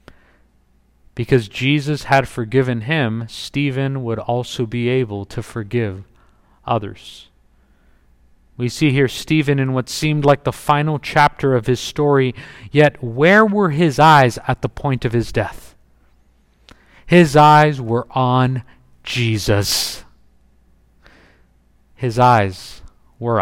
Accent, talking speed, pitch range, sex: American, 120 wpm, 110-185 Hz, male